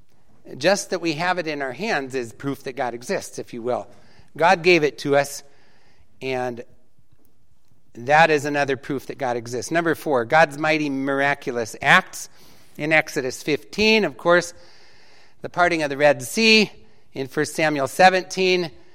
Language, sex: English, male